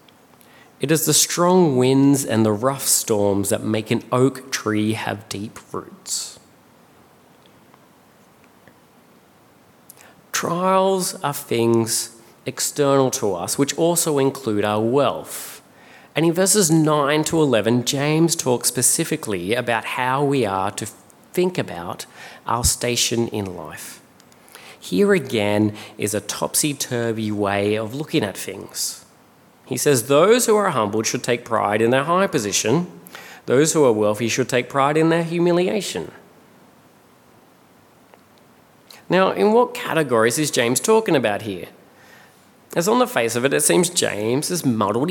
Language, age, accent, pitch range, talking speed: English, 30-49, Australian, 110-160 Hz, 135 wpm